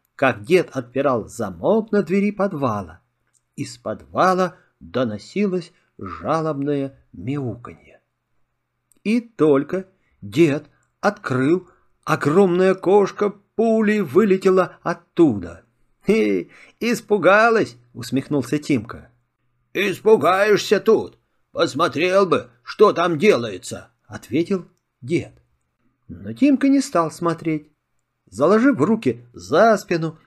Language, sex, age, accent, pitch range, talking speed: Russian, male, 50-69, native, 130-205 Hz, 85 wpm